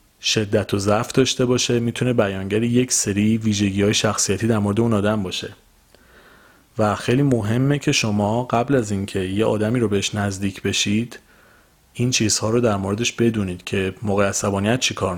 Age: 30-49